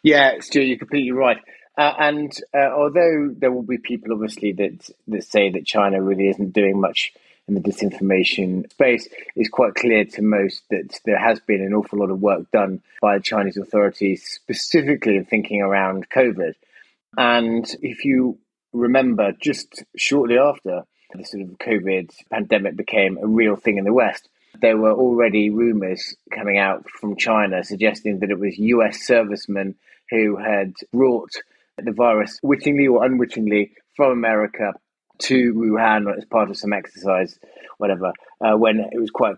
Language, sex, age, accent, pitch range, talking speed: English, male, 30-49, British, 100-120 Hz, 160 wpm